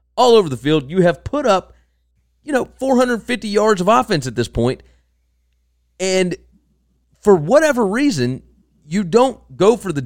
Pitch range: 120-200 Hz